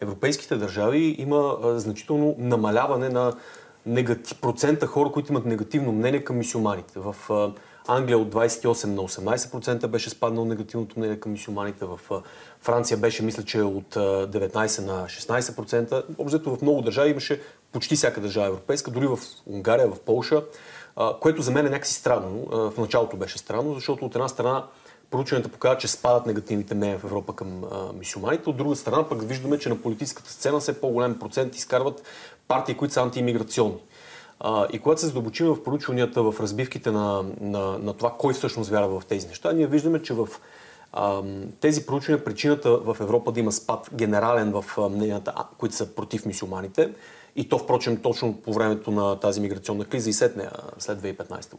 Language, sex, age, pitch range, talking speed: Bulgarian, male, 30-49, 105-135 Hz, 170 wpm